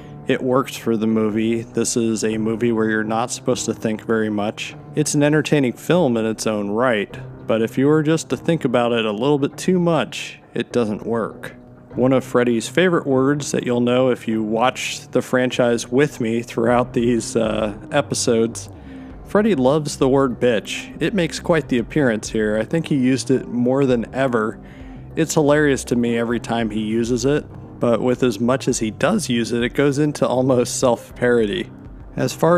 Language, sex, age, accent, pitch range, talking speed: English, male, 40-59, American, 115-135 Hz, 195 wpm